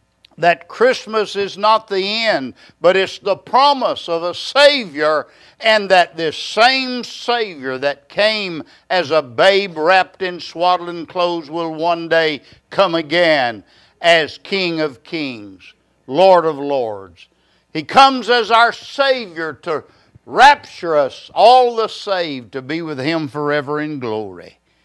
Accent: American